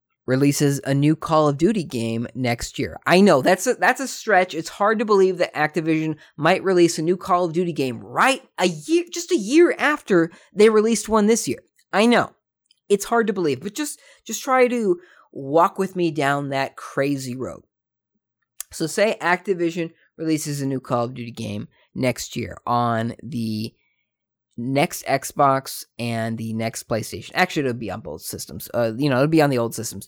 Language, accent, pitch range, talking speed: English, American, 125-195 Hz, 190 wpm